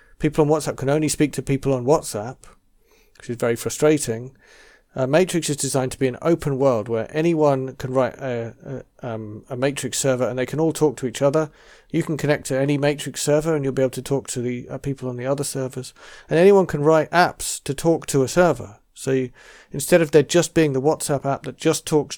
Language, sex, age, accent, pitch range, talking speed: English, male, 40-59, British, 130-155 Hz, 220 wpm